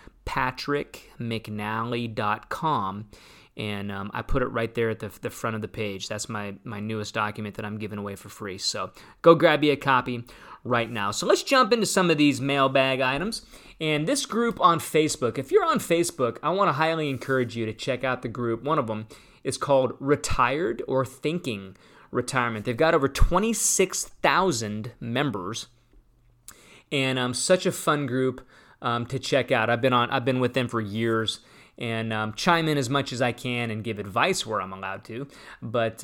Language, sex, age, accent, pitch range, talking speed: English, male, 20-39, American, 110-145 Hz, 190 wpm